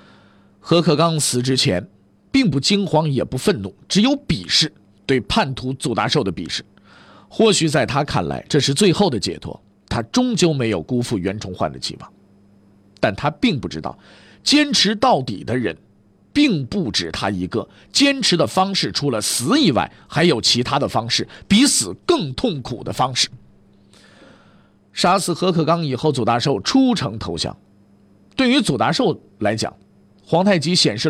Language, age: Chinese, 50-69